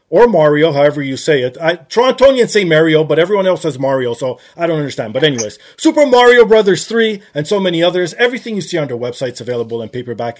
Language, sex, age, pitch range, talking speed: English, male, 30-49, 150-220 Hz, 215 wpm